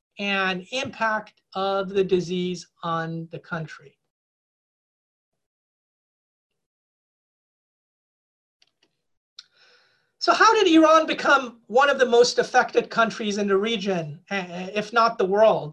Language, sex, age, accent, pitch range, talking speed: English, male, 40-59, American, 195-320 Hz, 100 wpm